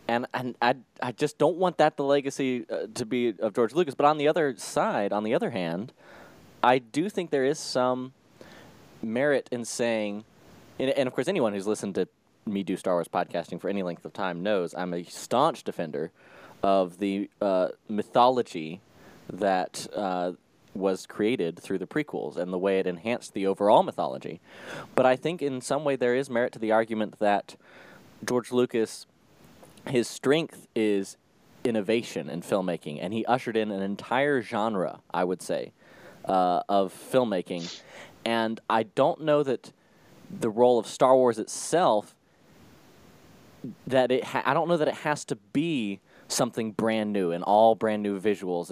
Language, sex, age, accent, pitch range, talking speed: English, male, 20-39, American, 100-125 Hz, 170 wpm